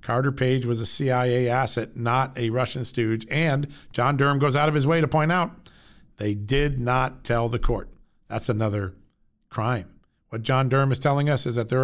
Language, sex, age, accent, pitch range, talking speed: English, male, 40-59, American, 115-140 Hz, 200 wpm